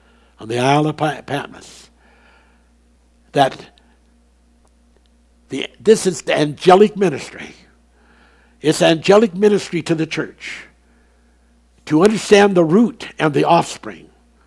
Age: 70-89